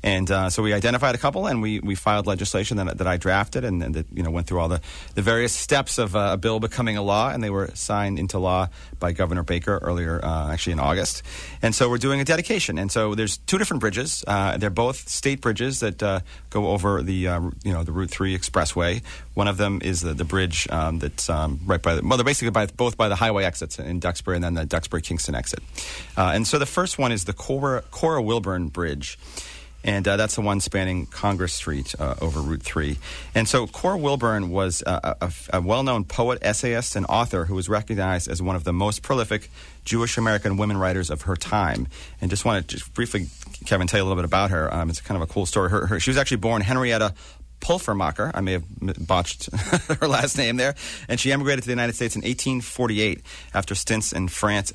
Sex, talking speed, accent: male, 225 wpm, American